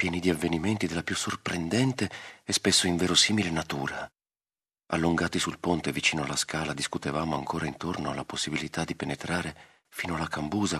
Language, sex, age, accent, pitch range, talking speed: Italian, male, 40-59, native, 80-105 Hz, 145 wpm